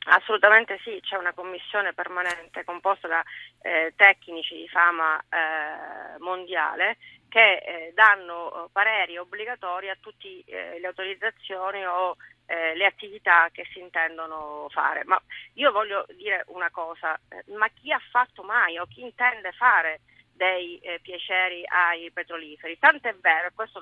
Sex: female